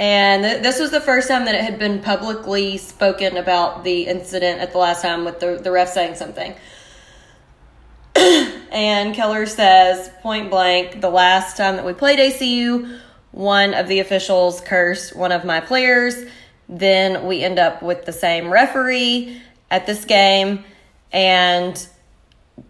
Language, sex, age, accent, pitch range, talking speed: English, female, 20-39, American, 180-215 Hz, 155 wpm